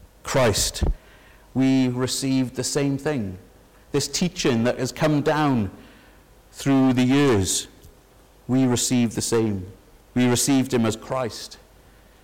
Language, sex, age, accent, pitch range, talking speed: English, male, 50-69, British, 110-135 Hz, 120 wpm